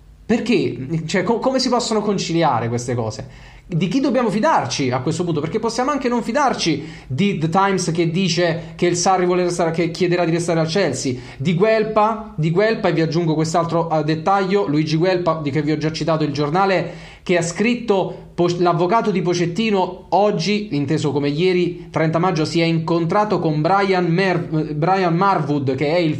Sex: male